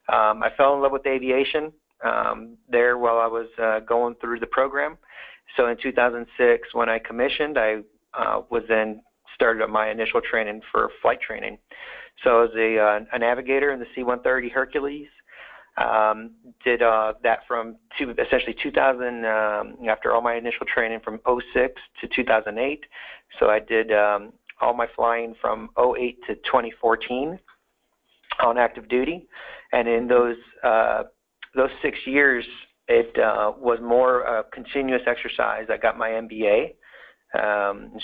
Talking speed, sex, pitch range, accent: 150 wpm, male, 110-125 Hz, American